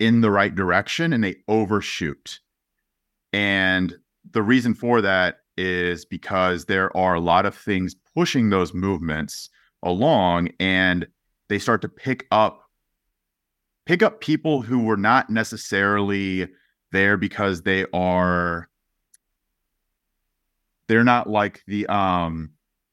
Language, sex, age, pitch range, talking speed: English, male, 30-49, 95-115 Hz, 120 wpm